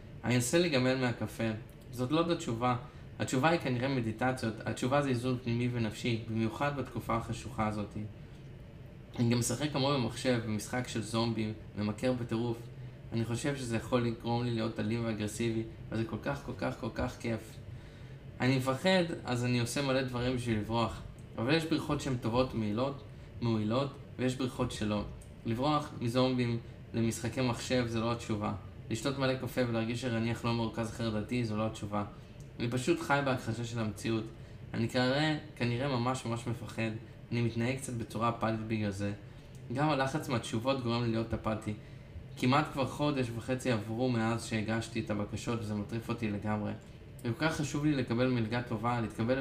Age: 20-39